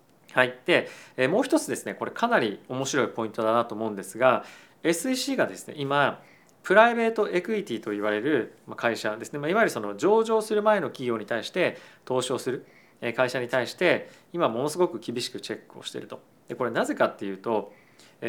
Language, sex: Japanese, male